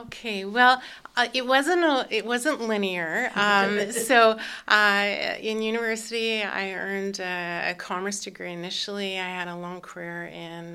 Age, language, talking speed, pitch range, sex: 30-49, English, 150 wpm, 180-220 Hz, female